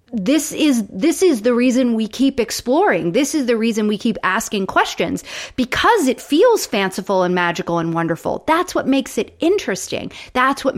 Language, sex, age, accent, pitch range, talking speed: English, female, 30-49, American, 175-240 Hz, 180 wpm